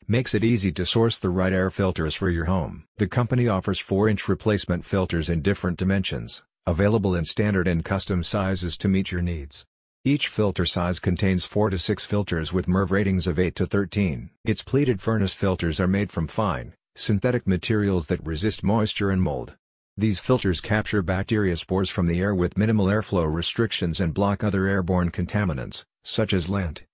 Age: 50-69